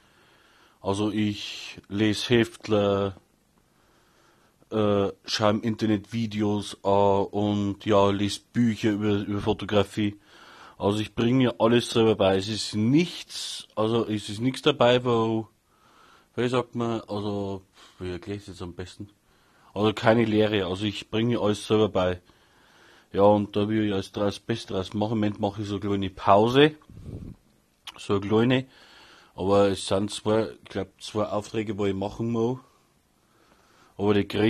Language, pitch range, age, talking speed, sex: German, 100-110 Hz, 30-49, 155 wpm, male